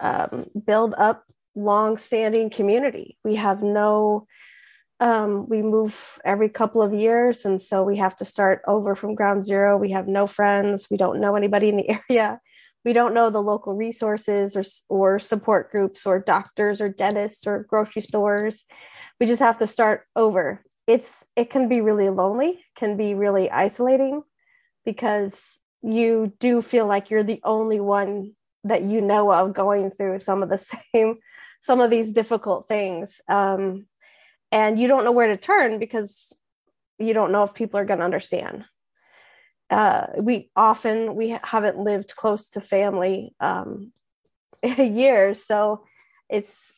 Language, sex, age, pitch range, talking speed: English, female, 30-49, 200-230 Hz, 160 wpm